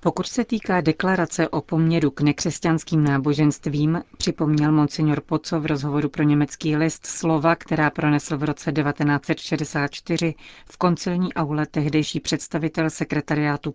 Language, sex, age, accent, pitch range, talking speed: Czech, female, 40-59, native, 150-165 Hz, 125 wpm